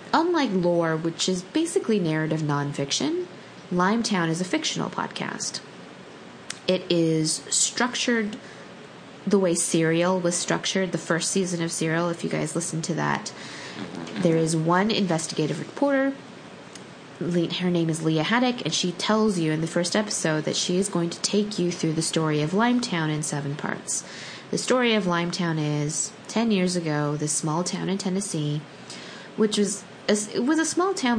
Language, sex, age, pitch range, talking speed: English, female, 20-39, 160-200 Hz, 160 wpm